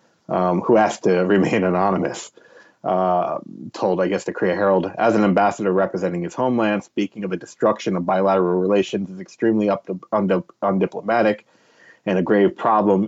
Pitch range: 95-105 Hz